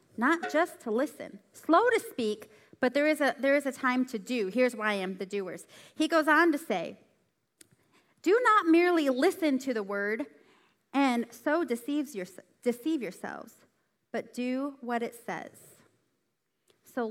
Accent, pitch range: American, 225-315 Hz